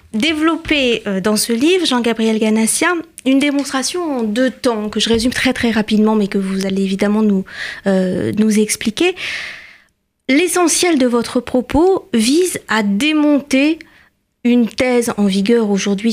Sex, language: female, French